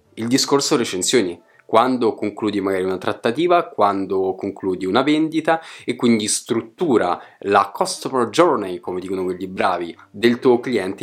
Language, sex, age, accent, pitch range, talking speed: Italian, male, 20-39, native, 105-165 Hz, 135 wpm